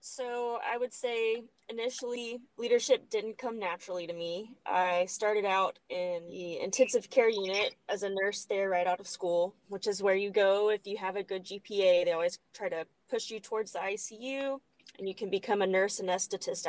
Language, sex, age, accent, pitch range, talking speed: English, female, 20-39, American, 185-230 Hz, 195 wpm